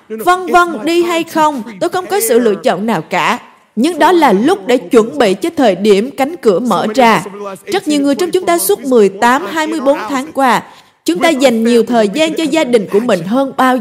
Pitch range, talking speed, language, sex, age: 235-320 Hz, 220 wpm, Vietnamese, female, 20-39